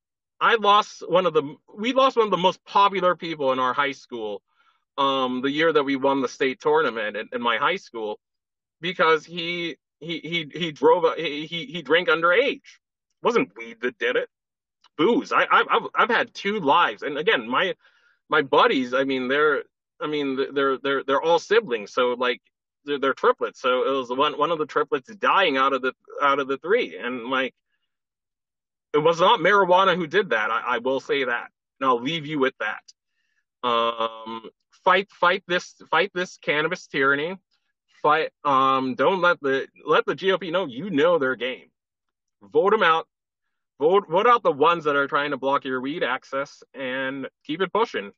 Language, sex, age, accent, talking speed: English, male, 30-49, American, 190 wpm